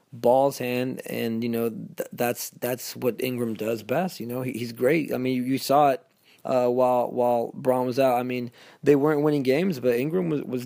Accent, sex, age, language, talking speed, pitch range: American, male, 20-39, English, 220 wpm, 120-140 Hz